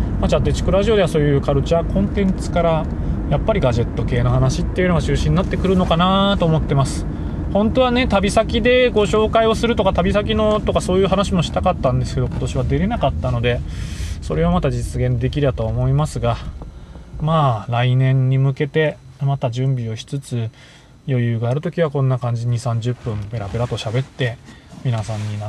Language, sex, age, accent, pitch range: Japanese, male, 20-39, native, 115-155 Hz